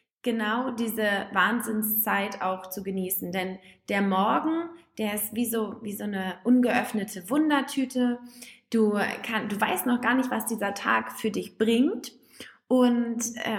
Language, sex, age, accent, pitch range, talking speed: English, female, 20-39, German, 200-245 Hz, 140 wpm